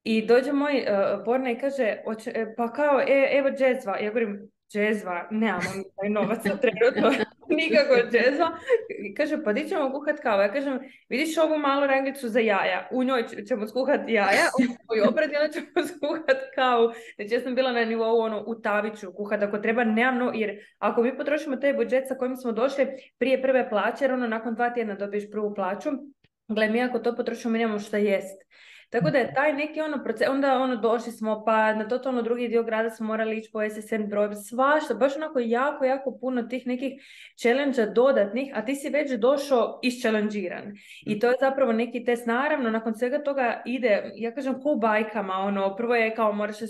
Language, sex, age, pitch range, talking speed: Croatian, female, 20-39, 215-265 Hz, 195 wpm